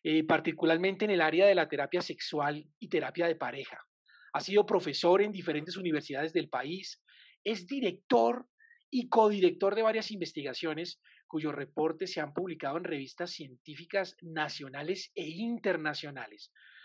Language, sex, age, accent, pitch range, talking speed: Spanish, male, 40-59, Colombian, 155-210 Hz, 140 wpm